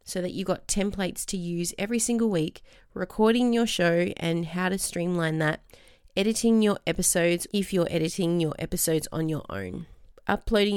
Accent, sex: Australian, female